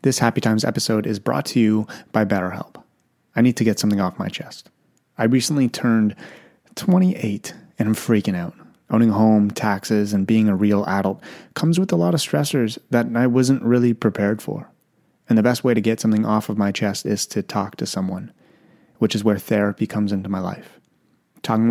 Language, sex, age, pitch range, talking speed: English, male, 30-49, 100-115 Hz, 200 wpm